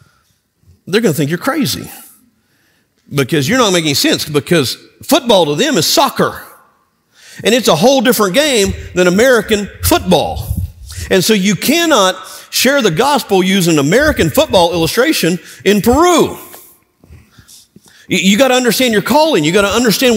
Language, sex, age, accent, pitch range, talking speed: English, male, 50-69, American, 170-250 Hz, 145 wpm